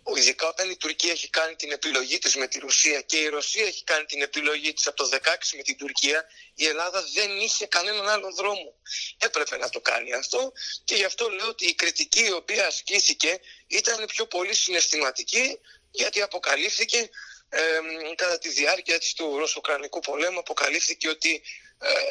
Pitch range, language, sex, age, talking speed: 150-195 Hz, Greek, male, 30-49, 175 wpm